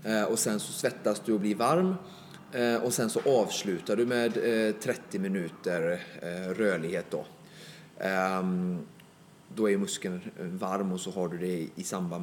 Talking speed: 140 wpm